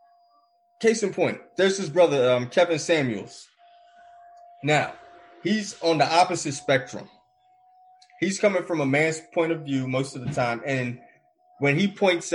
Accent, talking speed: American, 150 wpm